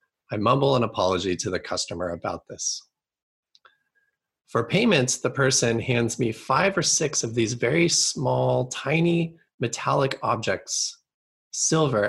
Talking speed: 130 wpm